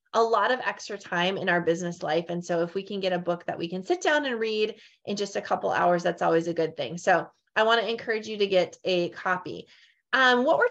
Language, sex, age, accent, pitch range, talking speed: English, female, 20-39, American, 185-235 Hz, 265 wpm